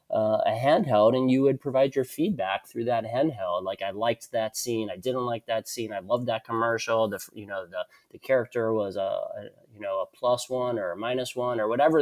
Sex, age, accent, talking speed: male, 30-49, American, 230 wpm